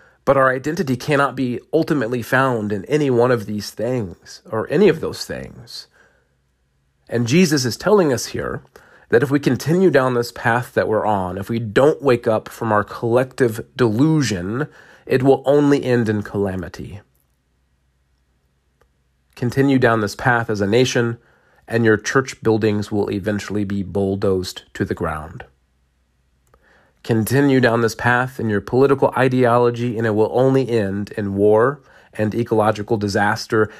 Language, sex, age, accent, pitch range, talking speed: English, male, 40-59, American, 95-125 Hz, 150 wpm